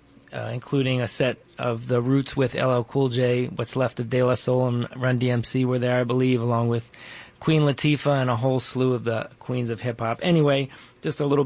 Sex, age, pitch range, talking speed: male, 30-49, 120-140 Hz, 215 wpm